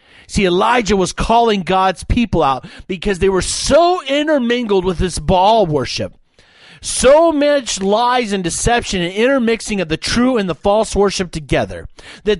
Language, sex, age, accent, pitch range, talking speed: English, male, 40-59, American, 170-235 Hz, 155 wpm